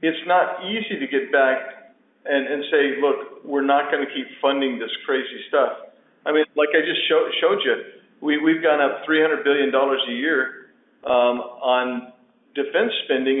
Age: 50-69